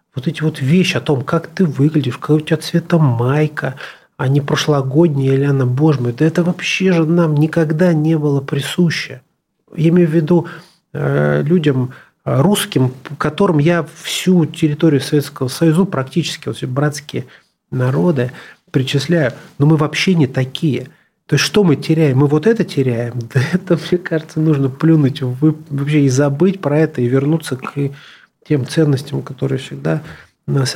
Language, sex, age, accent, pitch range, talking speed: Russian, male, 30-49, native, 135-170 Hz, 160 wpm